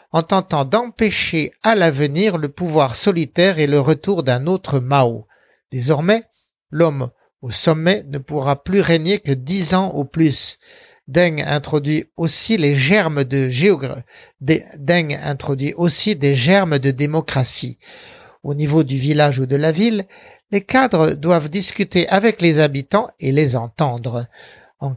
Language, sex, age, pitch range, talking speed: French, male, 60-79, 145-185 Hz, 140 wpm